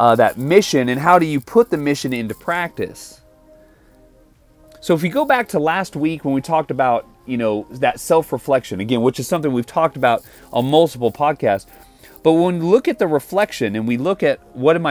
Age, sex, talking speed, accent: 30-49, male, 205 wpm, American